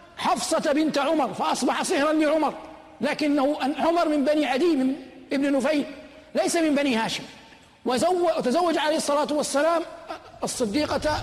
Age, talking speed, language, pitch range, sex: 50-69, 125 wpm, Arabic, 275-325 Hz, male